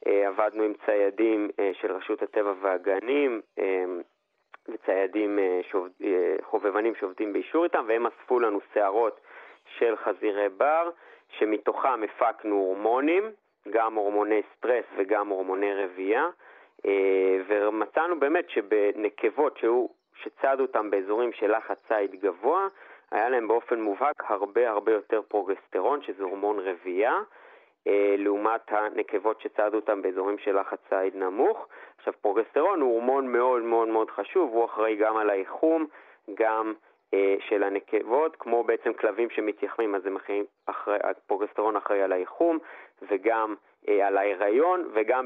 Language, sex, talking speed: Hebrew, male, 120 wpm